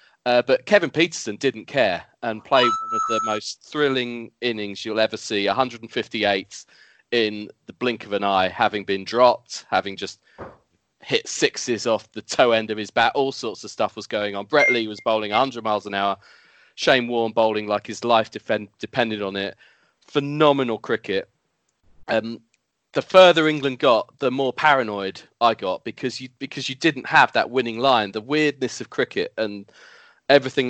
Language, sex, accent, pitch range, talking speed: English, male, British, 105-135 Hz, 175 wpm